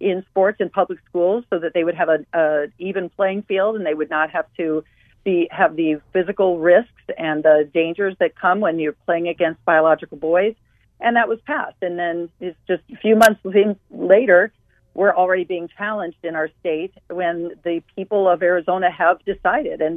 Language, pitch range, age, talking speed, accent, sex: English, 155-185 Hz, 40-59, 190 wpm, American, female